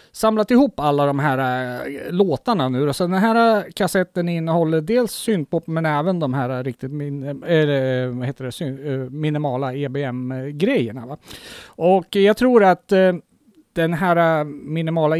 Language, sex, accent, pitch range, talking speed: Swedish, male, Norwegian, 140-190 Hz, 140 wpm